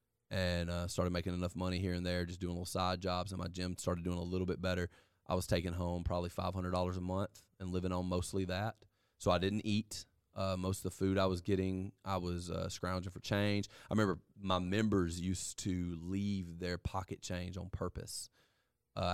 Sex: male